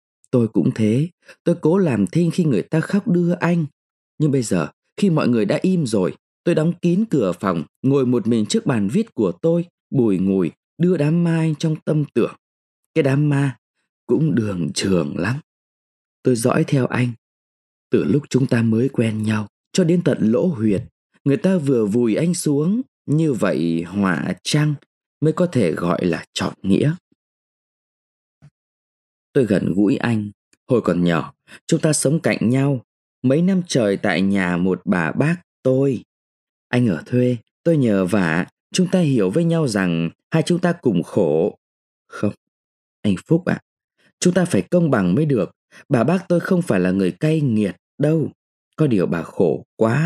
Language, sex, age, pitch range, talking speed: Vietnamese, male, 20-39, 105-170 Hz, 175 wpm